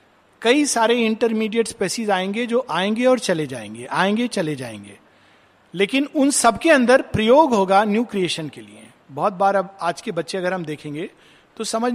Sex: male